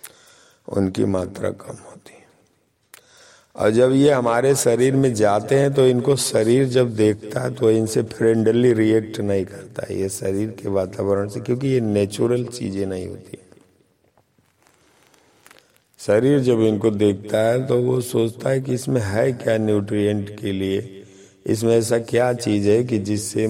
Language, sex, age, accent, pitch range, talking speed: Hindi, male, 50-69, native, 100-125 Hz, 150 wpm